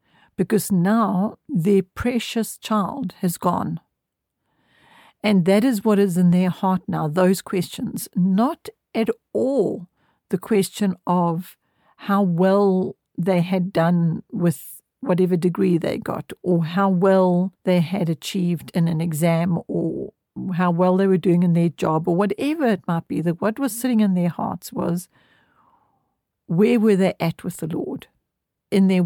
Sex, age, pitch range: female, 60-79, 175-210 Hz